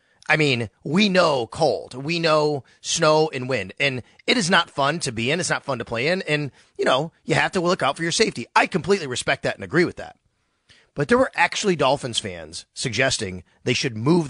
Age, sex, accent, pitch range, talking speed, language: 30-49, male, American, 120-180 Hz, 225 wpm, English